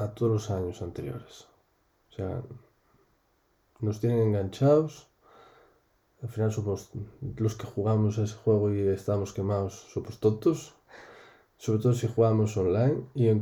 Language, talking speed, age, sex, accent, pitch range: Spanish, 135 wpm, 20-39, male, Spanish, 105-120 Hz